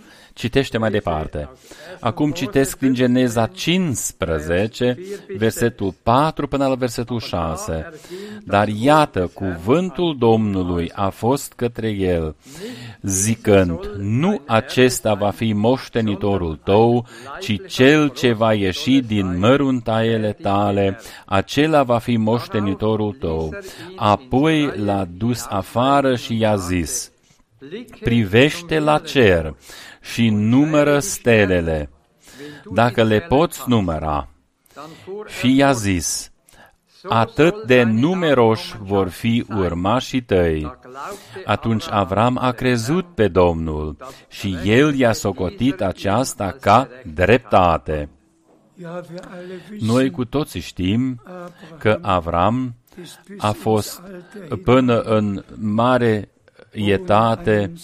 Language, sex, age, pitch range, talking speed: Romanian, male, 40-59, 100-135 Hz, 100 wpm